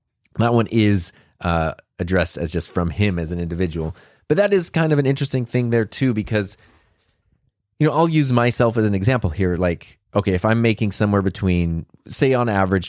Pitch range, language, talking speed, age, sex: 95-120 Hz, English, 195 wpm, 20-39, male